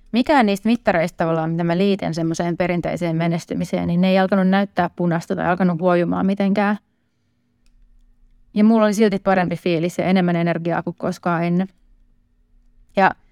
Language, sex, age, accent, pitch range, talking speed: Finnish, female, 30-49, native, 175-205 Hz, 145 wpm